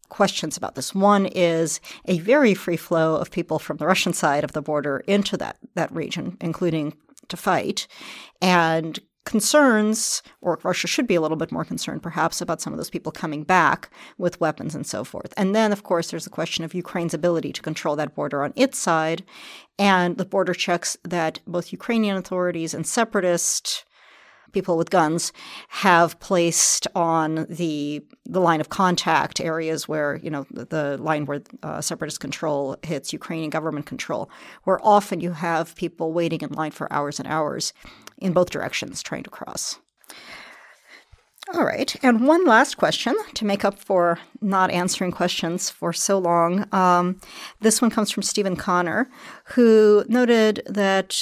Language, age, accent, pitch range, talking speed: English, 40-59, American, 160-200 Hz, 170 wpm